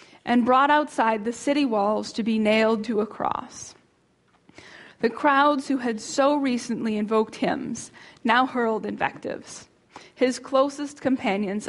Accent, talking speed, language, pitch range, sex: American, 135 wpm, English, 225-270 Hz, female